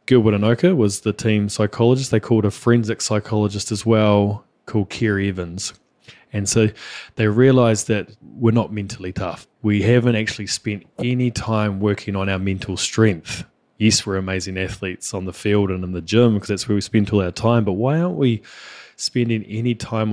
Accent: New Zealand